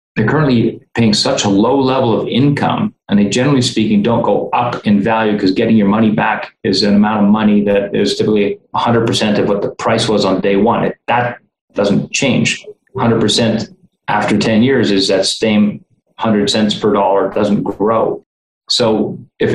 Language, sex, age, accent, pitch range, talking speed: English, male, 30-49, American, 100-120 Hz, 185 wpm